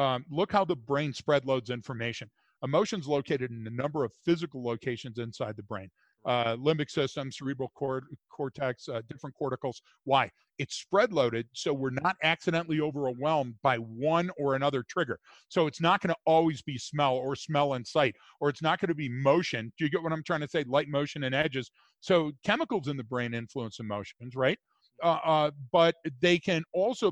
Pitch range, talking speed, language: 130-165 Hz, 195 wpm, English